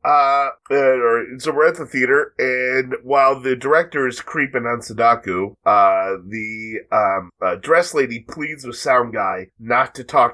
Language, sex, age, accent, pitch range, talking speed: English, male, 30-49, American, 105-150 Hz, 165 wpm